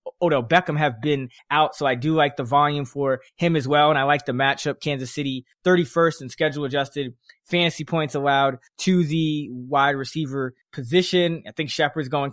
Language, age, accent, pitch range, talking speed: English, 20-39, American, 130-155 Hz, 185 wpm